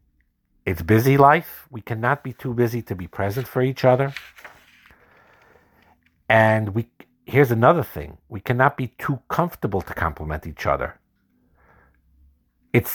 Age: 50-69